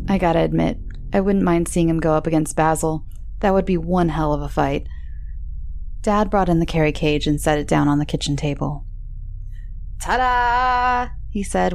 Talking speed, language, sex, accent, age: 190 wpm, English, female, American, 20-39